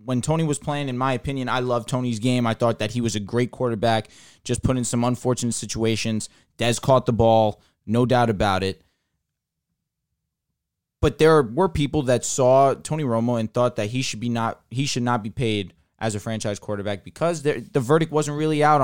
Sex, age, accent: male, 20-39, American